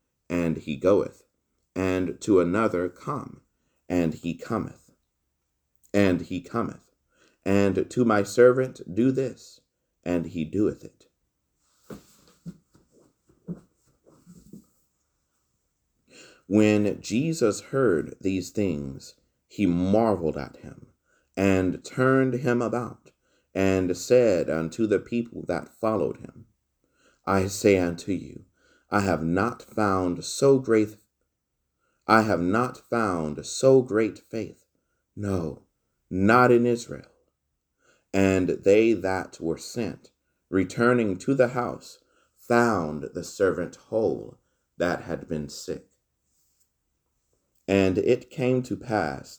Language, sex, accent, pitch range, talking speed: English, male, American, 80-115 Hz, 105 wpm